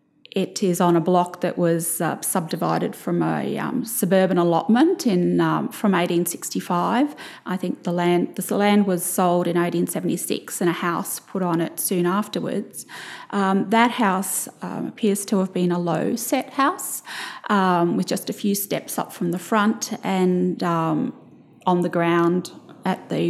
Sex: female